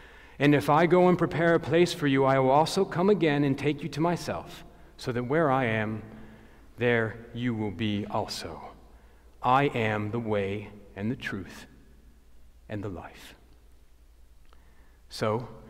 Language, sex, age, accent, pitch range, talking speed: English, male, 40-59, American, 105-140 Hz, 155 wpm